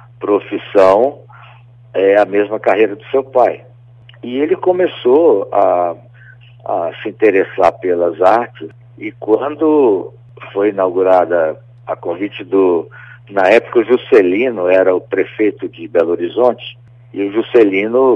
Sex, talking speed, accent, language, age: male, 120 wpm, Brazilian, Portuguese, 60-79